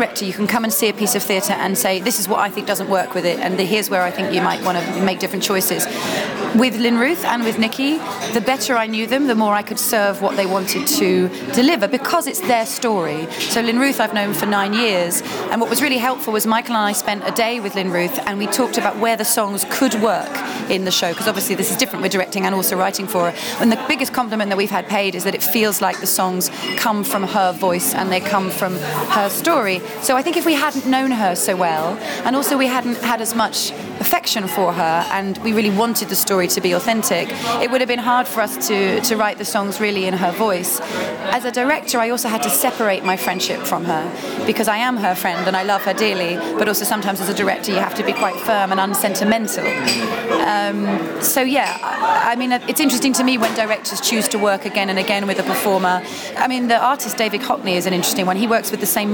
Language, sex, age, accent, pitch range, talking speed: English, female, 30-49, British, 190-235 Hz, 250 wpm